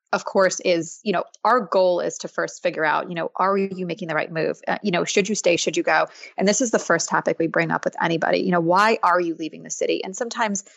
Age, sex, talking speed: 20-39, female, 280 wpm